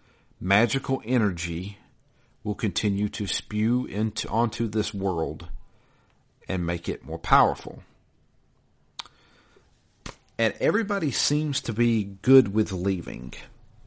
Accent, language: American, English